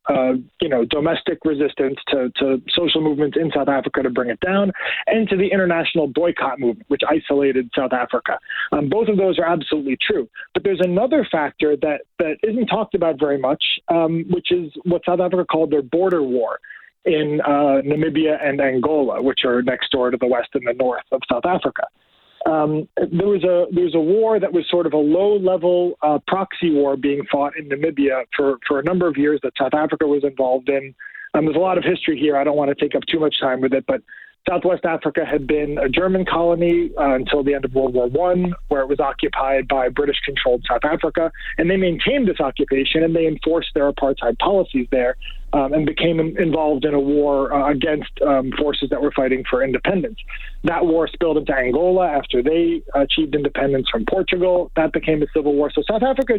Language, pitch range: English, 140-175 Hz